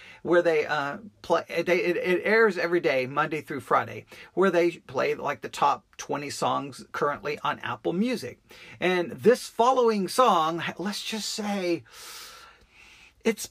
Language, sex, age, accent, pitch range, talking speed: English, male, 40-59, American, 165-220 Hz, 140 wpm